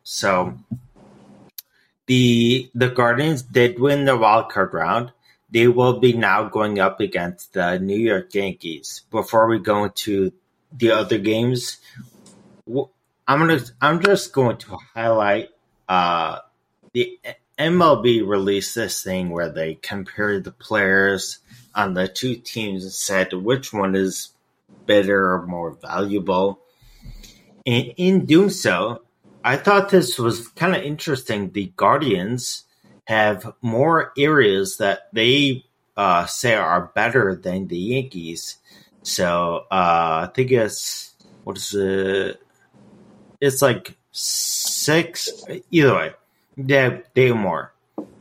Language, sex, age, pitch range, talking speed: English, male, 30-49, 95-130 Hz, 125 wpm